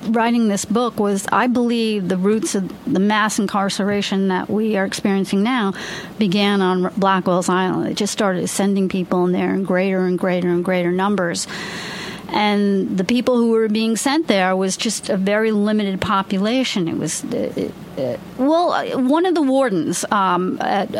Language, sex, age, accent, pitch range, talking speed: English, female, 40-59, American, 195-240 Hz, 175 wpm